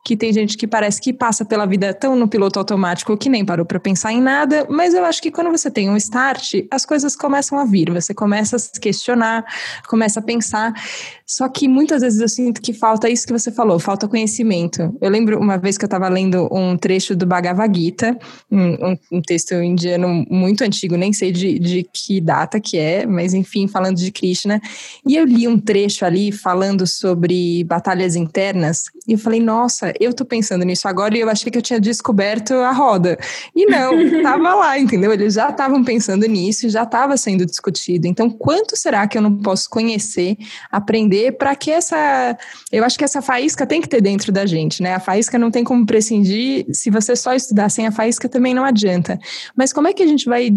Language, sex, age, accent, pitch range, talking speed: Portuguese, female, 20-39, Brazilian, 195-255 Hz, 210 wpm